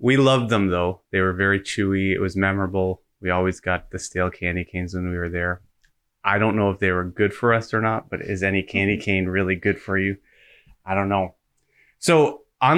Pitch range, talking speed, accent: 95-115 Hz, 220 wpm, American